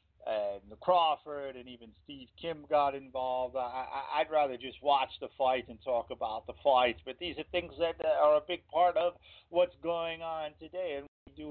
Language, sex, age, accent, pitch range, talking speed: English, male, 50-69, American, 130-150 Hz, 205 wpm